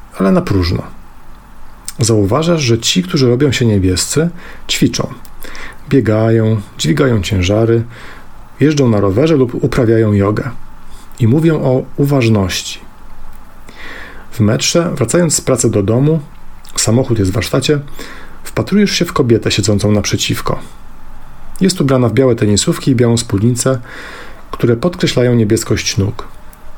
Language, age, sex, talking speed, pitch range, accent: English, 40-59, male, 120 wpm, 105-135 Hz, Polish